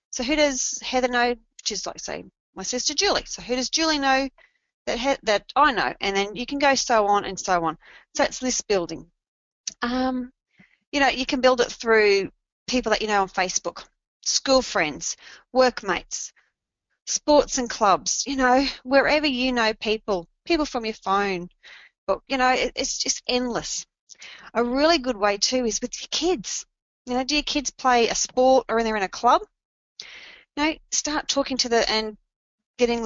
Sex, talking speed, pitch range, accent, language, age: female, 185 wpm, 200-260 Hz, Australian, English, 30-49